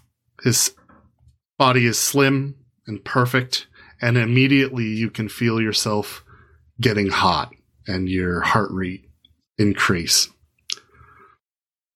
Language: English